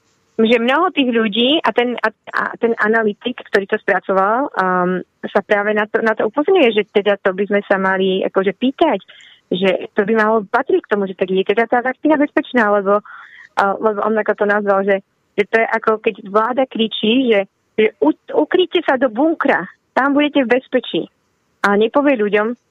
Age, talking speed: 30-49, 175 wpm